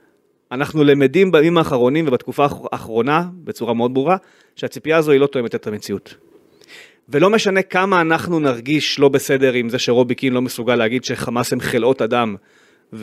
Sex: male